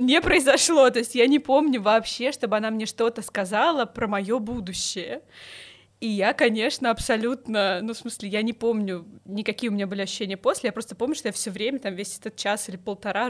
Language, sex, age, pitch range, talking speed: Russian, female, 20-39, 205-275 Hz, 205 wpm